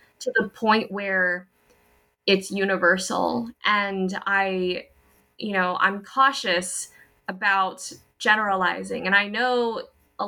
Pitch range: 180-230 Hz